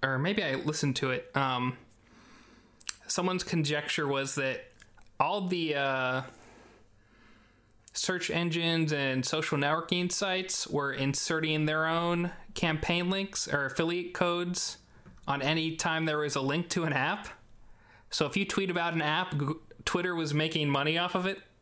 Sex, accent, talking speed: male, American, 145 wpm